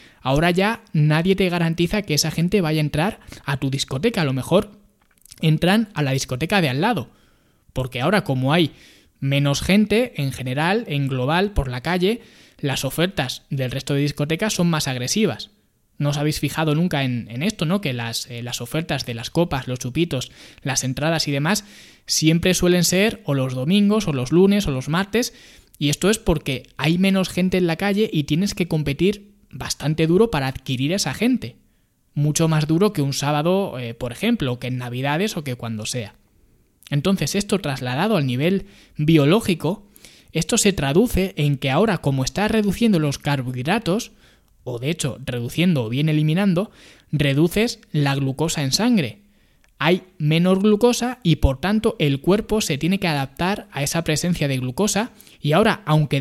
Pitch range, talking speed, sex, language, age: 135-195 Hz, 180 wpm, male, Spanish, 20-39